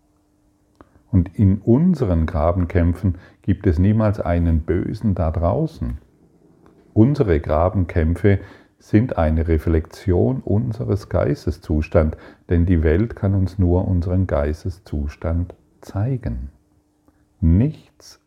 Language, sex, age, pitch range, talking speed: German, male, 40-59, 80-100 Hz, 90 wpm